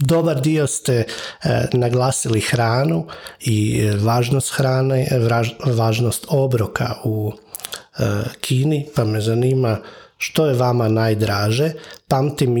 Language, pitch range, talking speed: Croatian, 115-145 Hz, 110 wpm